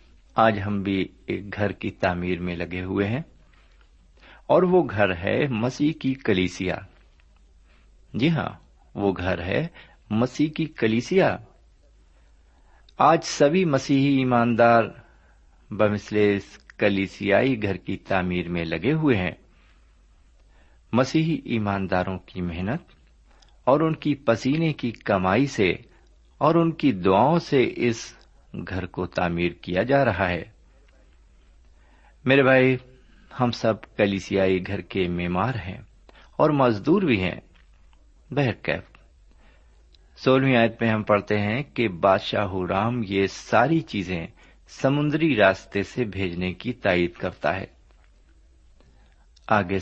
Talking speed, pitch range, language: 115 wpm, 85-115 Hz, Urdu